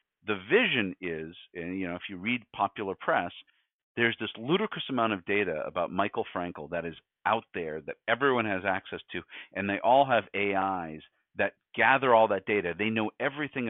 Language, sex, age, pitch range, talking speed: English, male, 50-69, 95-115 Hz, 185 wpm